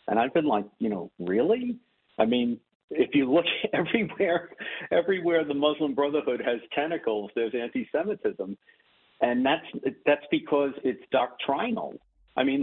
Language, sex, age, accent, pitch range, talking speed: English, male, 50-69, American, 120-155 Hz, 140 wpm